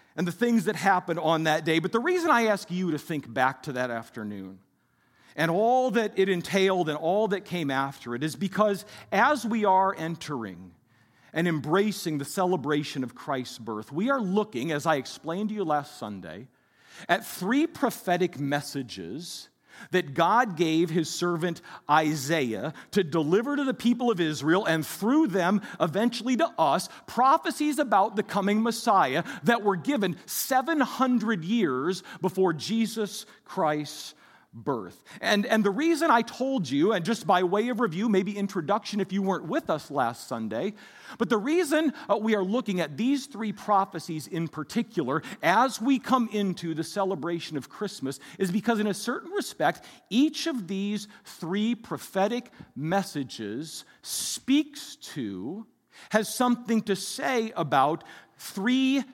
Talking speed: 155 wpm